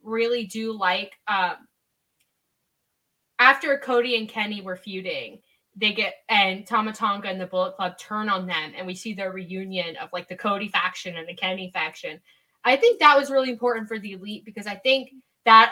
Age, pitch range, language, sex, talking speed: 10-29, 190-240 Hz, English, female, 185 wpm